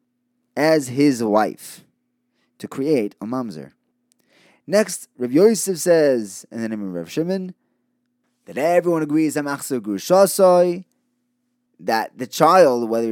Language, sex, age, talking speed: English, male, 20-39, 110 wpm